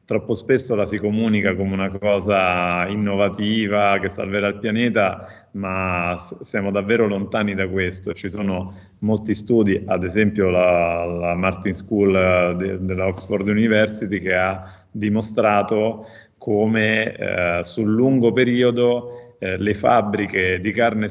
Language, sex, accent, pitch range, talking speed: Italian, male, native, 95-115 Hz, 130 wpm